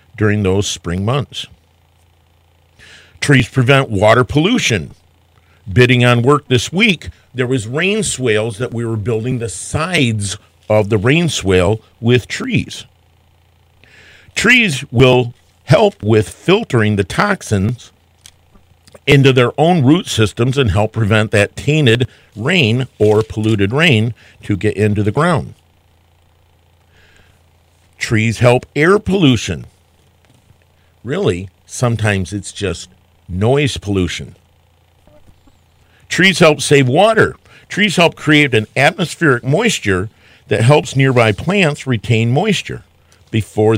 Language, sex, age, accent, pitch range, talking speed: English, male, 50-69, American, 90-135 Hz, 110 wpm